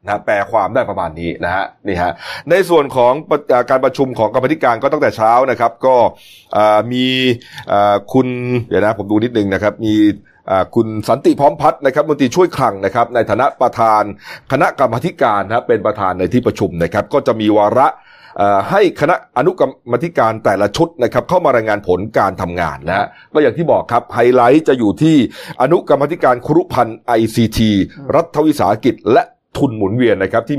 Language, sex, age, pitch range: Thai, male, 30-49, 105-130 Hz